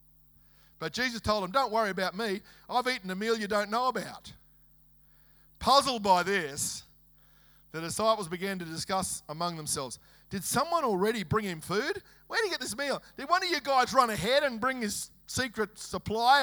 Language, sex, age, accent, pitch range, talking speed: English, male, 40-59, Australian, 140-215 Hz, 185 wpm